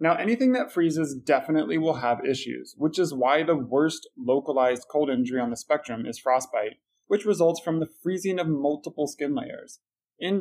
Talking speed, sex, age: 180 wpm, male, 20-39